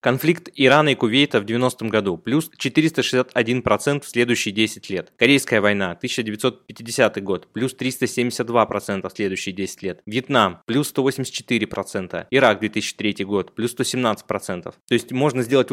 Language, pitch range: Russian, 110-130 Hz